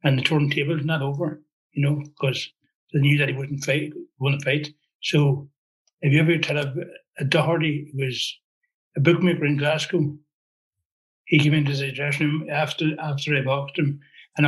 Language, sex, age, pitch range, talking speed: English, male, 60-79, 140-155 Hz, 180 wpm